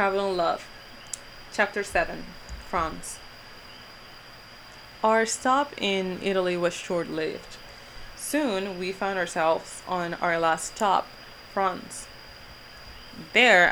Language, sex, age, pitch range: Japanese, female, 20-39, 155-195 Hz